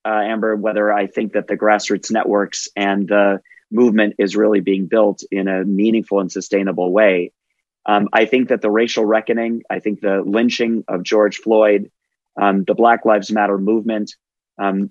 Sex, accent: male, American